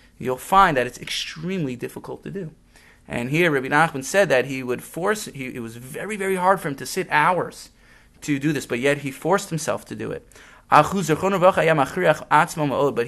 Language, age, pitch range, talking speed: English, 30-49, 135-185 Hz, 185 wpm